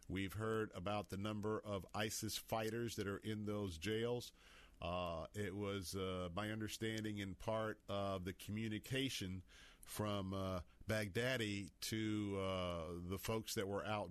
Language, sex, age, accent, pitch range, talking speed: English, male, 50-69, American, 95-115 Hz, 145 wpm